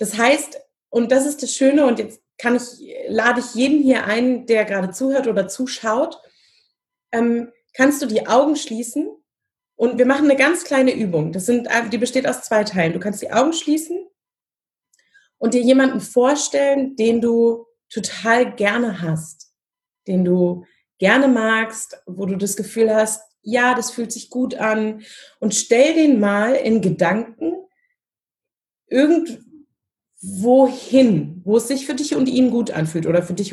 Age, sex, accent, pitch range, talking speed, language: 30-49, female, German, 205-265 Hz, 160 wpm, German